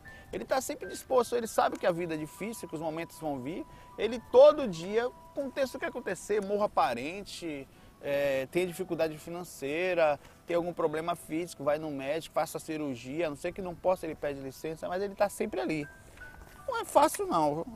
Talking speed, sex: 195 wpm, male